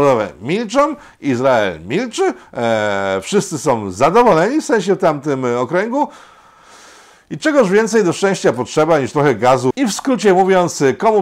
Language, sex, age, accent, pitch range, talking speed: Polish, male, 50-69, native, 140-220 Hz, 140 wpm